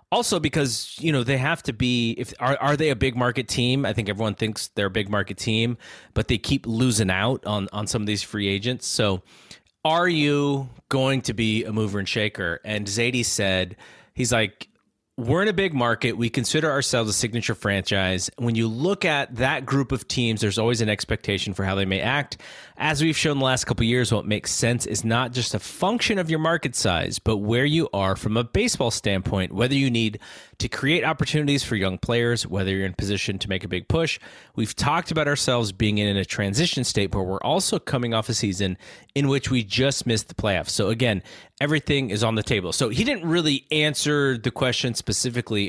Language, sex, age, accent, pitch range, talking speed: English, male, 30-49, American, 105-135 Hz, 215 wpm